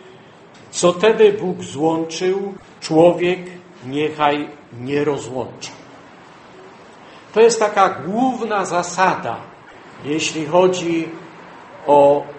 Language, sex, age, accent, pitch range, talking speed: Polish, male, 70-89, native, 145-180 Hz, 75 wpm